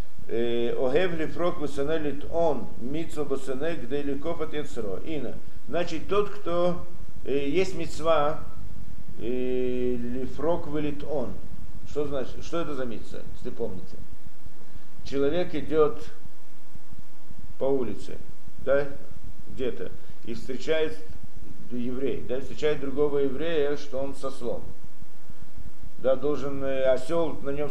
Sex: male